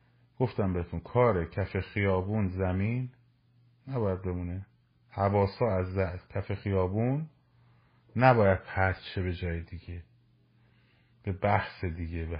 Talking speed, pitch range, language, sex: 105 wpm, 95-125 Hz, Persian, male